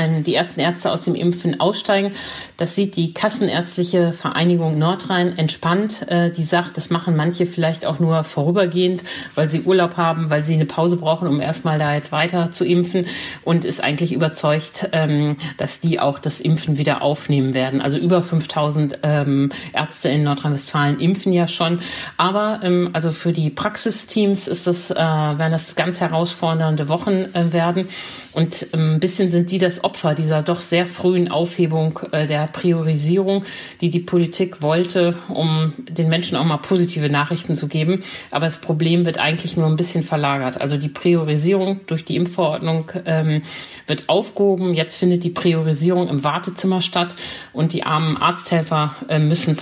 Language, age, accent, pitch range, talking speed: German, 50-69, German, 155-180 Hz, 155 wpm